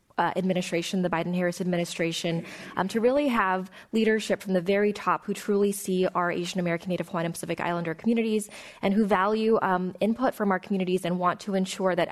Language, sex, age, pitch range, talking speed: English, female, 20-39, 175-205 Hz, 195 wpm